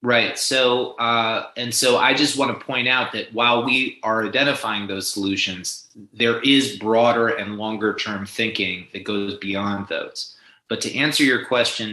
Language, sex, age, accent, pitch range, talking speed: English, male, 30-49, American, 100-120 Hz, 170 wpm